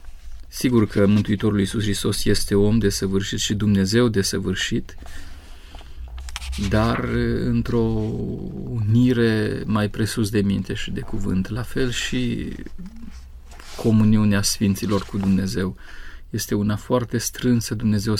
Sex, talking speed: male, 110 wpm